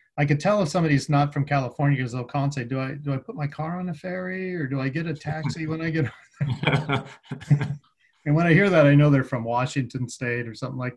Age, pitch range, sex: 40-59, 130-145 Hz, male